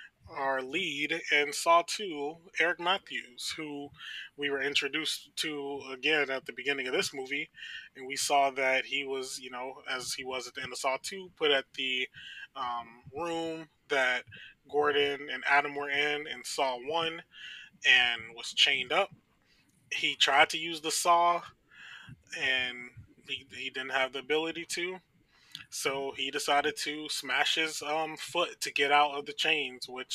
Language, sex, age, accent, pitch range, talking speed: English, male, 20-39, American, 130-155 Hz, 165 wpm